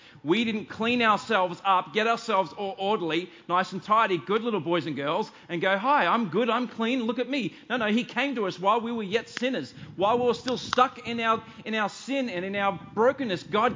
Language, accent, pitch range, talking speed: English, Australian, 180-235 Hz, 230 wpm